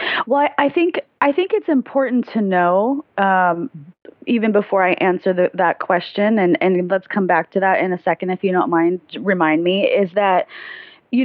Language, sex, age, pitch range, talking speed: English, female, 20-39, 185-230 Hz, 190 wpm